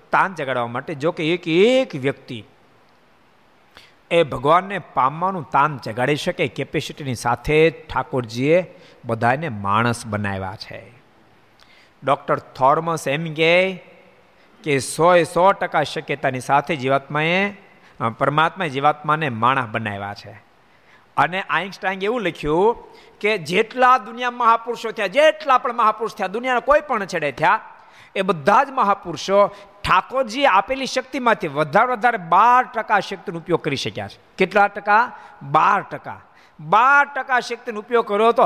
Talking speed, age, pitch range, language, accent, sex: 95 wpm, 50-69, 150-215 Hz, Gujarati, native, male